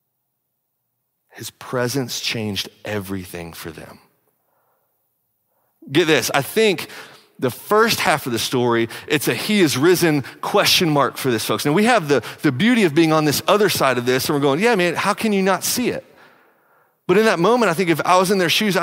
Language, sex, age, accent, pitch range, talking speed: English, male, 30-49, American, 105-150 Hz, 200 wpm